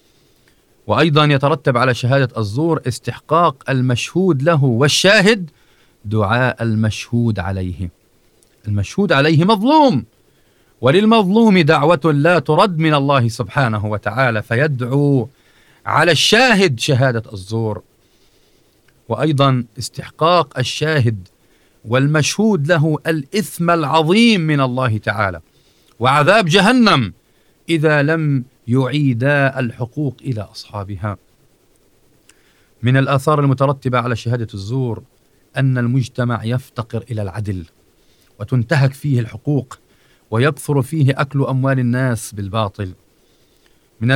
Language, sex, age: Arabic, male, 40-59